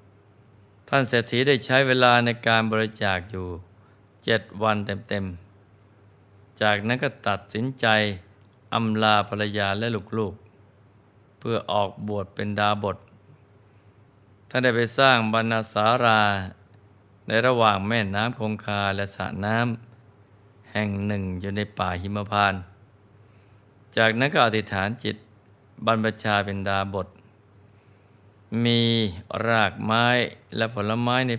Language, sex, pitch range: Thai, male, 100-110 Hz